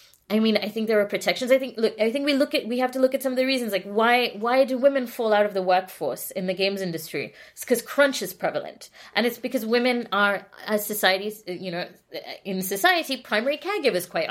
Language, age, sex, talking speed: English, 20-39, female, 240 wpm